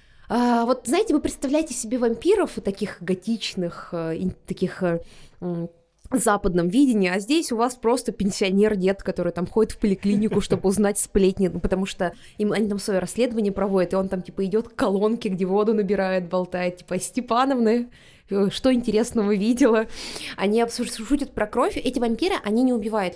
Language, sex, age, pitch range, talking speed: Russian, female, 20-39, 185-235 Hz, 155 wpm